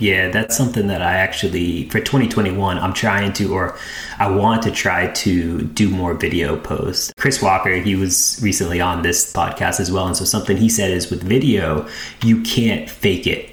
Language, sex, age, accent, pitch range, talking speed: English, male, 30-49, American, 90-110 Hz, 190 wpm